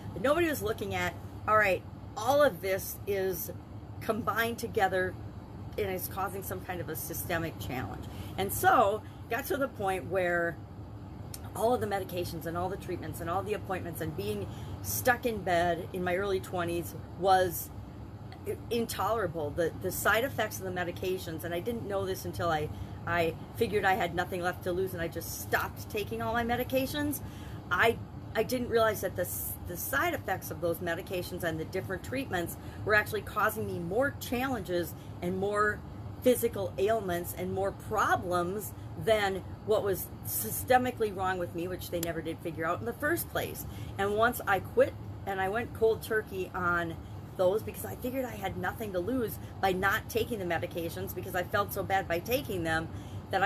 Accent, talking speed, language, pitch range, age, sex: American, 180 wpm, English, 155-215 Hz, 40-59, female